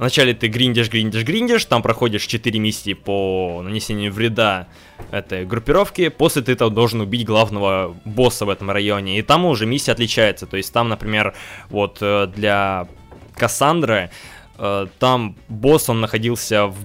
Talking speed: 140 wpm